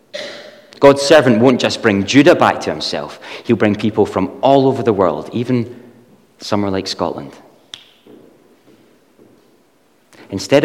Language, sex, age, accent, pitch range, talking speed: English, male, 30-49, British, 95-125 Hz, 125 wpm